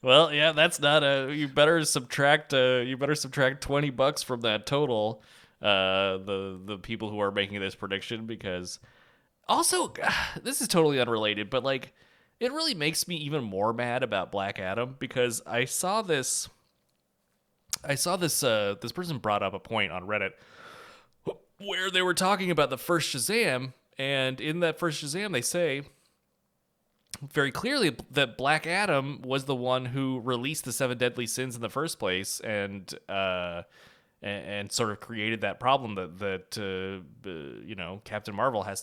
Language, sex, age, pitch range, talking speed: English, male, 20-39, 110-170 Hz, 170 wpm